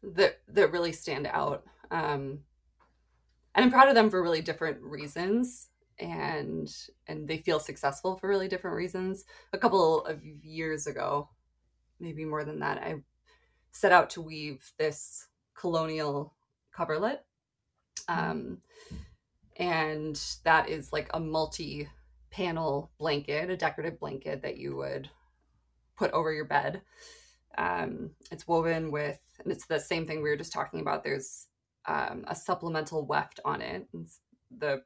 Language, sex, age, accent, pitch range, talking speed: English, female, 20-39, American, 145-185 Hz, 140 wpm